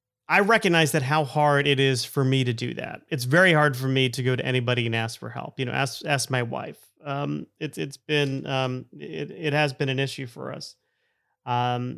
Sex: male